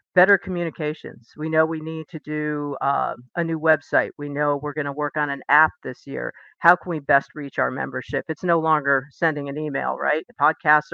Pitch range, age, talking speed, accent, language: 140-160 Hz, 50-69, 210 wpm, American, English